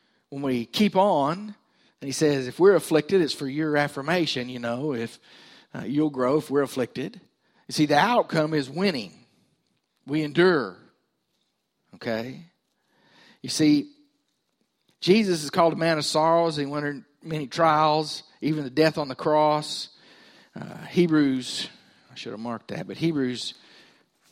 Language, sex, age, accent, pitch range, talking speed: English, male, 50-69, American, 130-175 Hz, 150 wpm